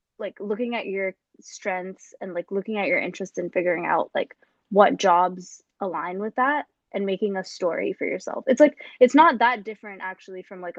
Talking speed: 195 wpm